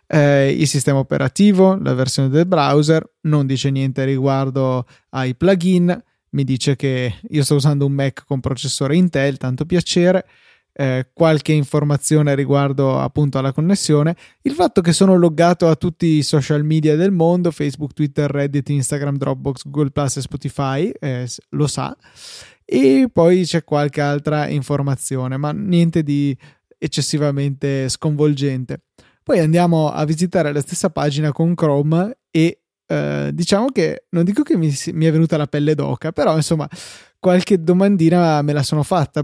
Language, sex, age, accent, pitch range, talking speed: Italian, male, 20-39, native, 140-165 Hz, 155 wpm